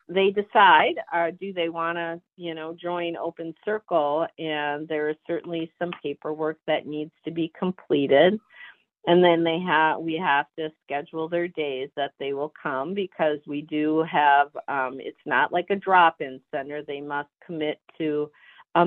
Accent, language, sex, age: American, English, female, 50-69